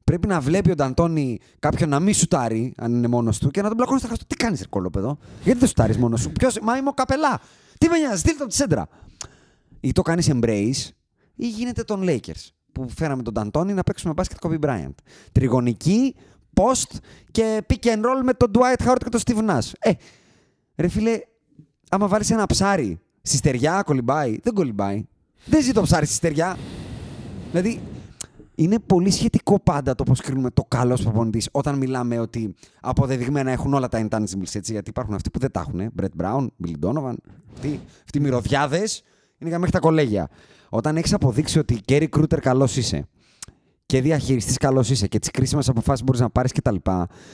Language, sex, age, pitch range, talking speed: Greek, male, 30-49, 120-195 Hz, 185 wpm